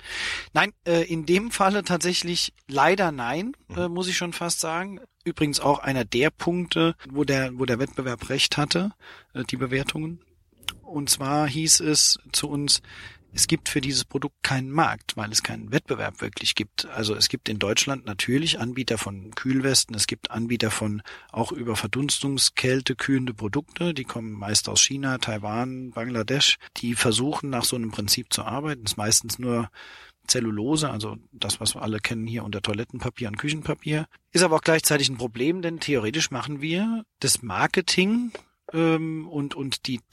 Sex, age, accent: male, 40-59, German